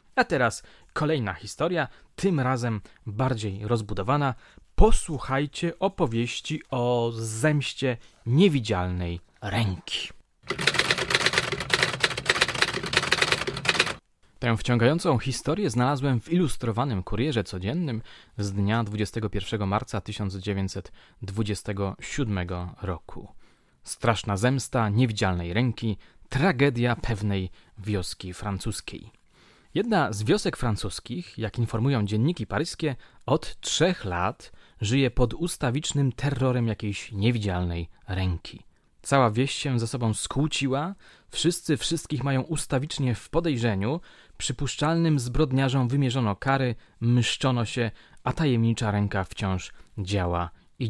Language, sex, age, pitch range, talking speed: Polish, male, 20-39, 105-140 Hz, 90 wpm